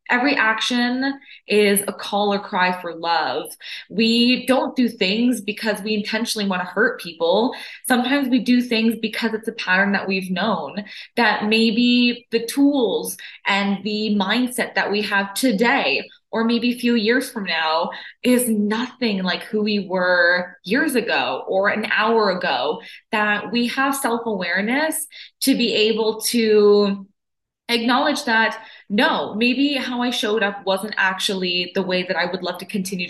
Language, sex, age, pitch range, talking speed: English, female, 20-39, 200-245 Hz, 160 wpm